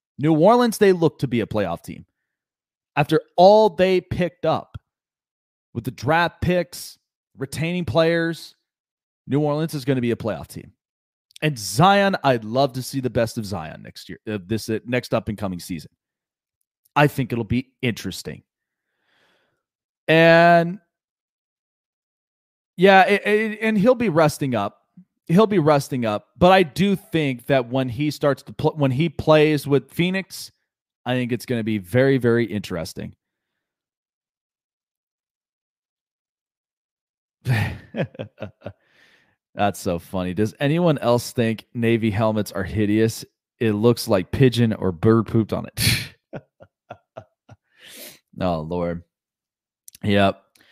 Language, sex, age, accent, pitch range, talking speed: English, male, 30-49, American, 110-160 Hz, 130 wpm